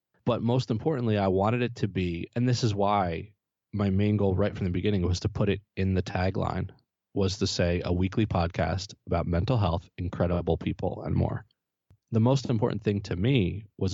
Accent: American